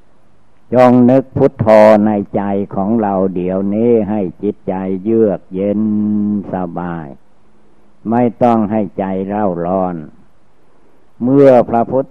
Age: 60-79